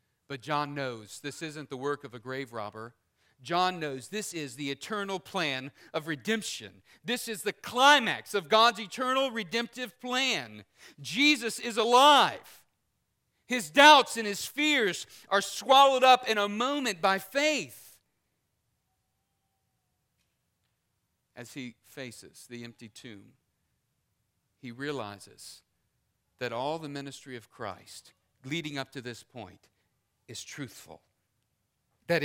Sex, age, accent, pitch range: male, 40-59, American, 110-170 Hz